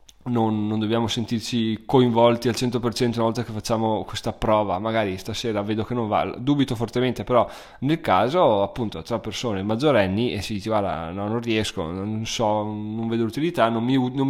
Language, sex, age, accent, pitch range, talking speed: Italian, male, 20-39, native, 110-120 Hz, 175 wpm